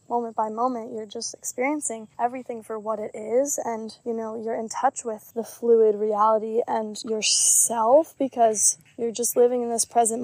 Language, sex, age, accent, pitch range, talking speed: English, female, 10-29, American, 225-255 Hz, 175 wpm